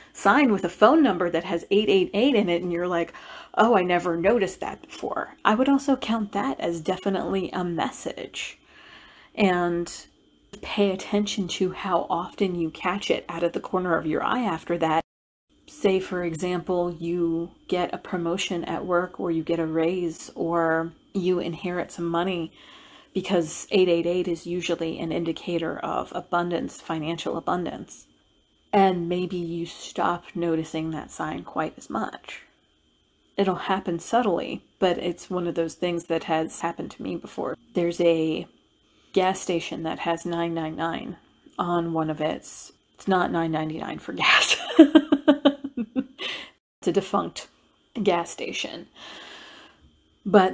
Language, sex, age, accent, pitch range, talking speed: English, female, 40-59, American, 170-195 Hz, 145 wpm